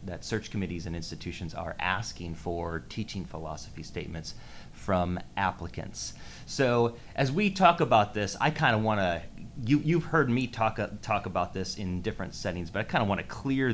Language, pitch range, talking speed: English, 95-125 Hz, 190 wpm